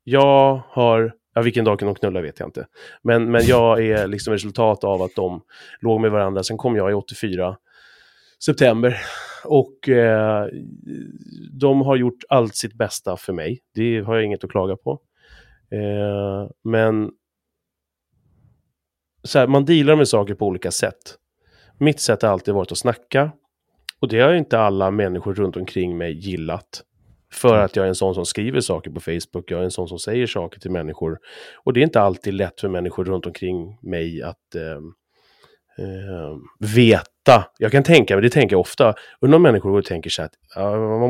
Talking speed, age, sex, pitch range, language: 180 wpm, 30-49, male, 95-120 Hz, Swedish